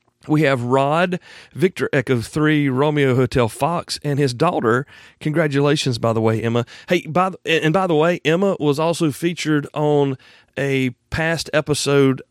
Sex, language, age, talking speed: male, English, 40-59, 155 wpm